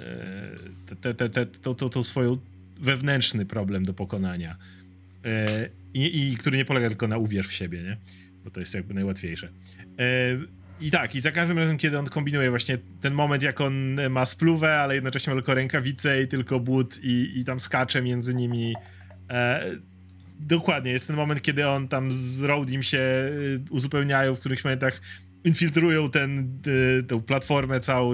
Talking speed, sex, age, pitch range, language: 175 wpm, male, 30-49, 95-145 Hz, Polish